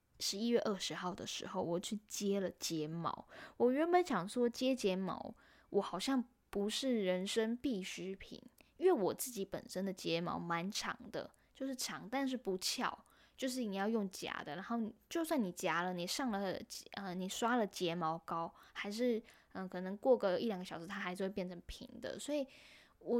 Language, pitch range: Chinese, 185-240 Hz